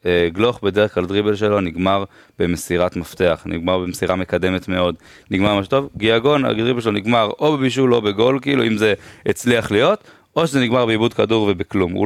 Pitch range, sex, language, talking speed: 100-125 Hz, male, Hebrew, 175 wpm